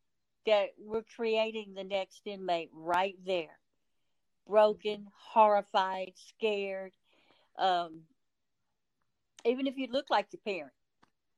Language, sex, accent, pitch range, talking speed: English, female, American, 180-215 Hz, 100 wpm